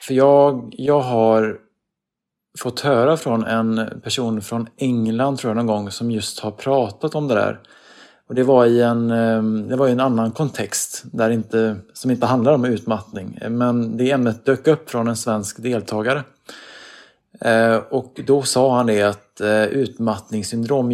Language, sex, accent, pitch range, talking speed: Swedish, male, Norwegian, 110-130 Hz, 160 wpm